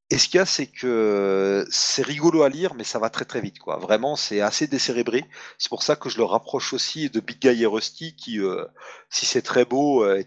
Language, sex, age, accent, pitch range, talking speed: French, male, 40-59, French, 110-140 Hz, 245 wpm